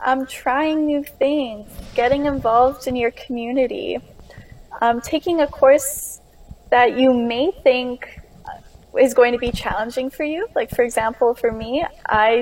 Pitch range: 215-270 Hz